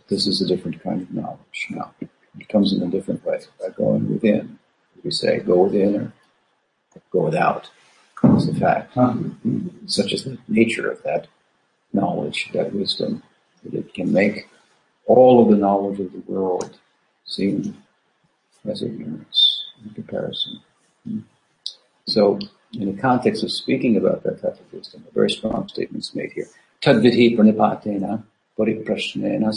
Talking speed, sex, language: 150 wpm, male, English